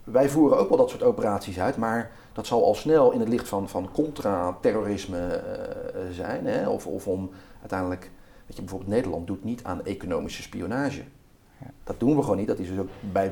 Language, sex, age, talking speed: Dutch, male, 40-59, 205 wpm